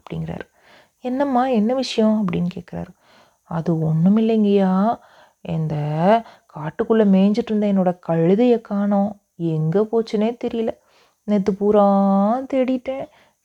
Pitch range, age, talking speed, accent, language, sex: 175-225 Hz, 30-49, 95 wpm, native, Tamil, female